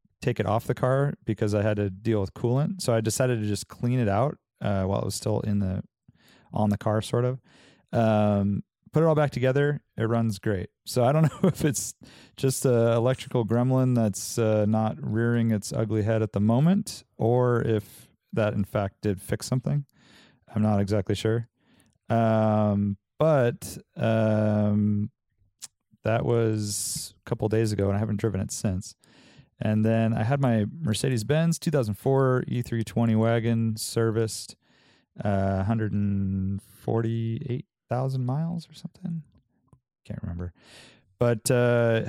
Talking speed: 155 wpm